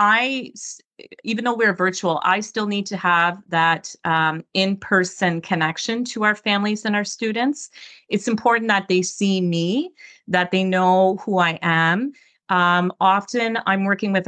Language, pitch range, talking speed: English, 170-215 Hz, 155 wpm